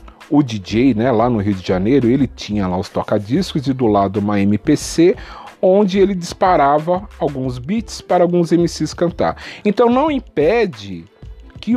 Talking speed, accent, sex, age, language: 160 wpm, Brazilian, male, 40-59, Portuguese